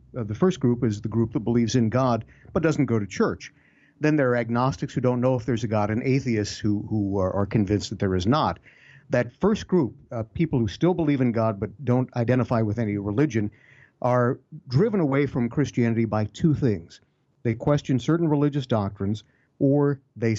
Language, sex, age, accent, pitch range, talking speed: English, male, 50-69, American, 110-140 Hz, 205 wpm